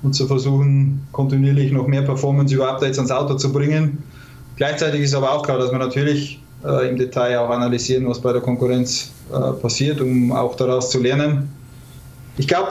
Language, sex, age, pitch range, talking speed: German, male, 20-39, 125-135 Hz, 185 wpm